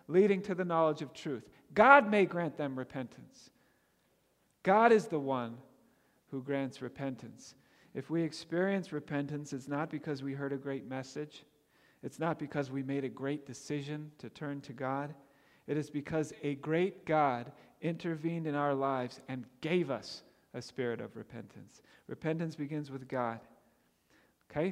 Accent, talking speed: American, 155 wpm